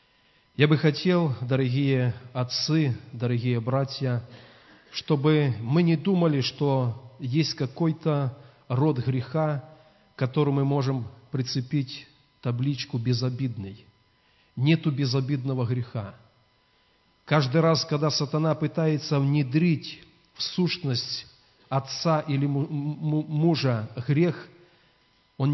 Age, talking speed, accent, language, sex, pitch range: 40-59, 90 wpm, native, Russian, male, 125-155 Hz